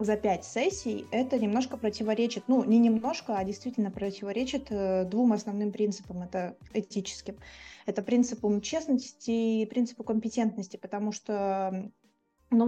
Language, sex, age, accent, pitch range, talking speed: Russian, female, 20-39, native, 195-230 Hz, 125 wpm